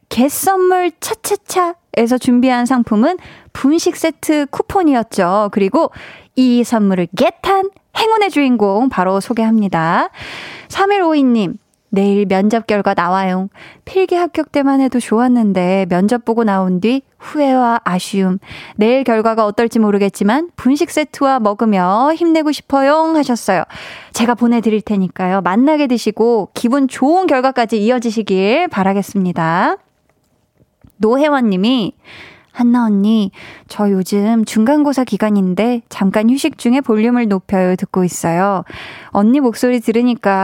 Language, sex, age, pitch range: Korean, female, 20-39, 205-280 Hz